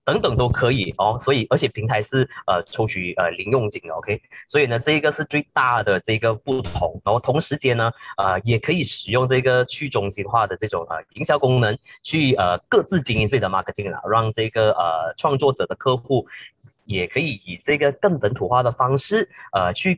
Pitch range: 105-140 Hz